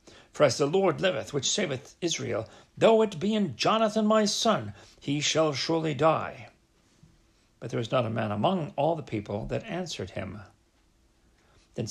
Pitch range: 110-155 Hz